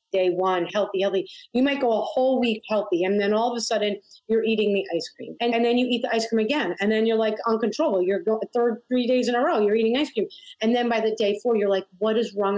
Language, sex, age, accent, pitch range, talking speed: English, female, 30-49, American, 200-245 Hz, 280 wpm